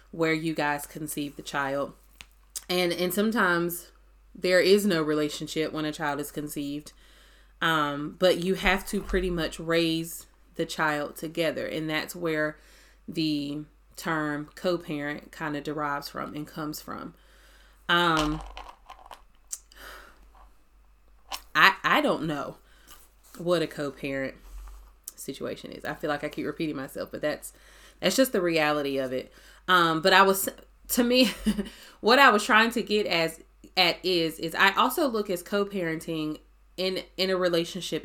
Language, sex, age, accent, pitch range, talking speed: English, female, 30-49, American, 150-185 Hz, 145 wpm